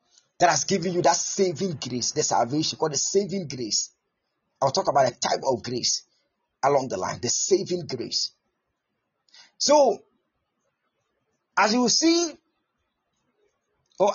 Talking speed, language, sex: 135 wpm, English, male